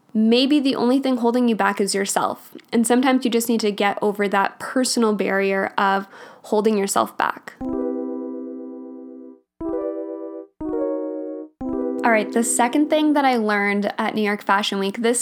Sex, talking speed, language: female, 150 wpm, English